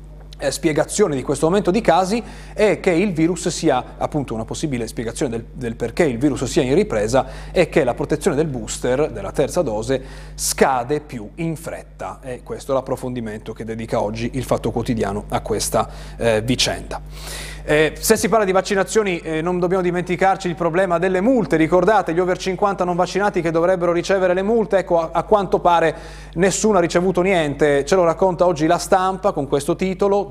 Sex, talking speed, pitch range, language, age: male, 185 wpm, 140-180 Hz, Italian, 30-49